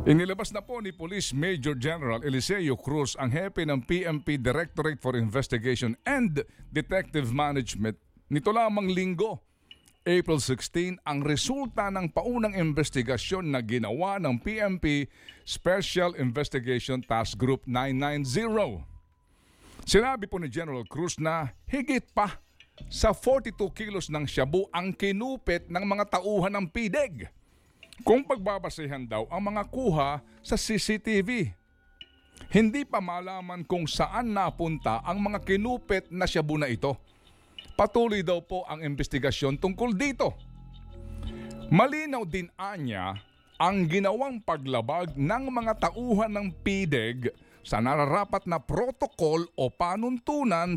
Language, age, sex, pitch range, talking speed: Filipino, 50-69, male, 130-200 Hz, 120 wpm